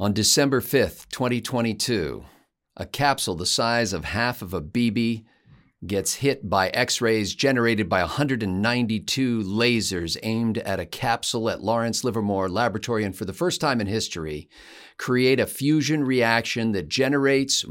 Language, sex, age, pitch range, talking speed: English, male, 50-69, 110-135 Hz, 140 wpm